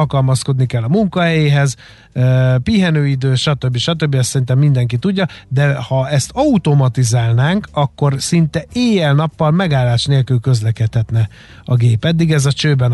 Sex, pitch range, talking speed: male, 130-155 Hz, 125 wpm